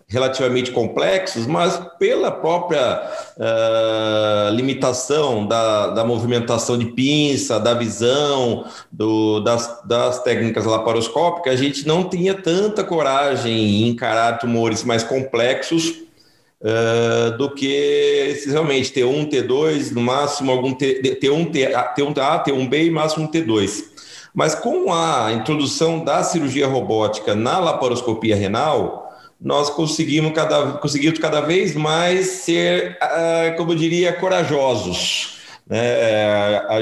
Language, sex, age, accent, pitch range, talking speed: Portuguese, male, 40-59, Brazilian, 120-155 Hz, 120 wpm